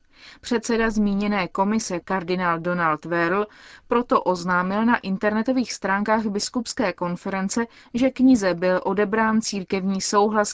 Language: Czech